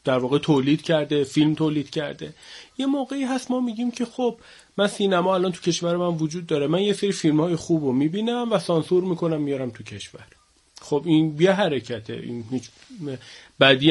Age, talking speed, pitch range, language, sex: 30-49, 180 wpm, 140-190 Hz, Persian, male